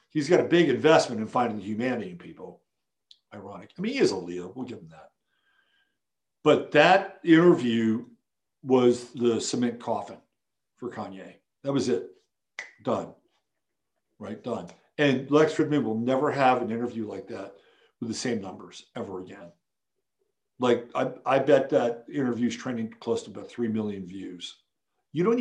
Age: 50-69